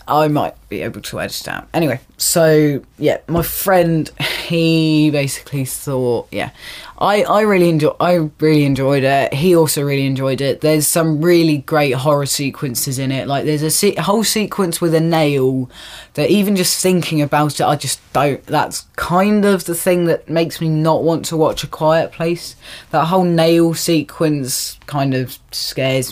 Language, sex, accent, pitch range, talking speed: English, female, British, 140-170 Hz, 175 wpm